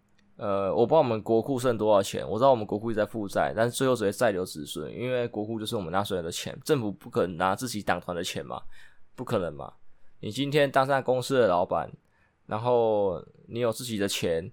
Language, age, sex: Chinese, 20-39, male